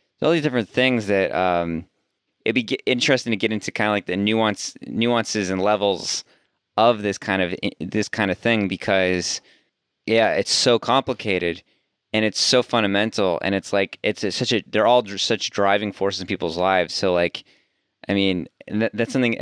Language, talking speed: English, 175 wpm